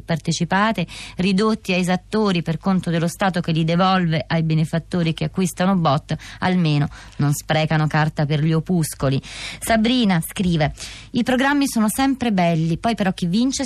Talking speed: 150 wpm